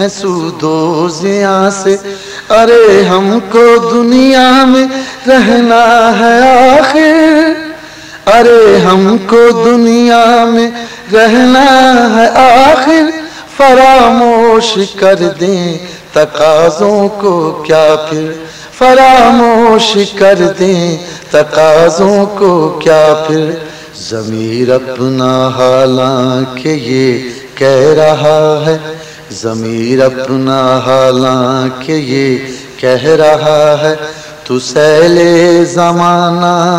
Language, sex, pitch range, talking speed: English, male, 155-235 Hz, 80 wpm